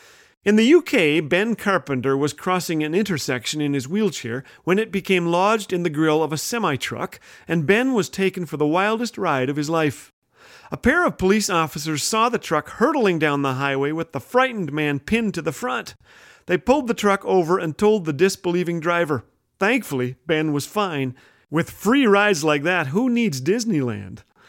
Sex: male